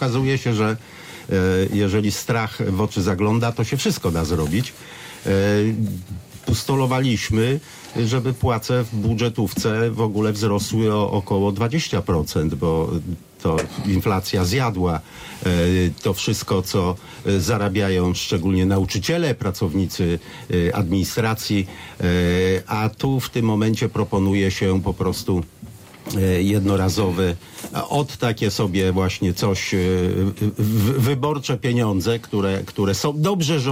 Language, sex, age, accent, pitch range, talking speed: Polish, male, 50-69, native, 95-120 Hz, 105 wpm